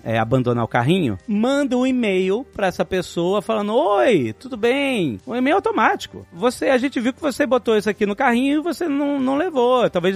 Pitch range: 170-230 Hz